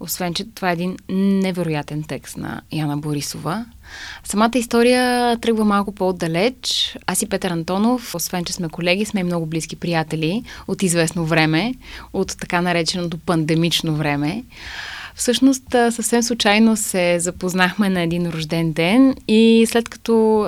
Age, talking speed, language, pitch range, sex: 20-39, 140 wpm, Bulgarian, 175-225 Hz, female